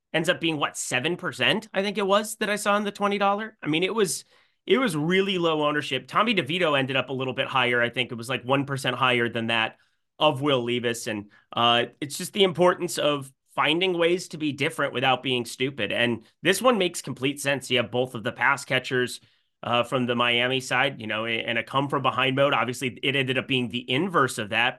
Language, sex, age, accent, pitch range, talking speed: English, male, 30-49, American, 125-175 Hz, 225 wpm